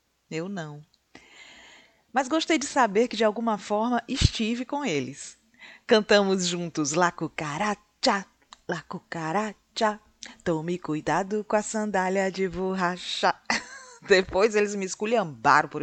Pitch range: 155-215 Hz